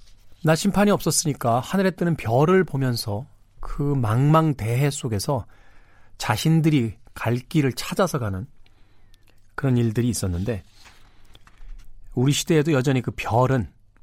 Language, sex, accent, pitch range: Korean, male, native, 100-140 Hz